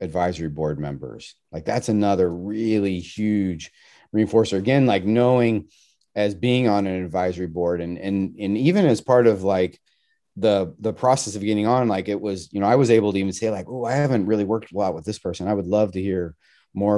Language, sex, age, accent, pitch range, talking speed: English, male, 30-49, American, 90-110 Hz, 210 wpm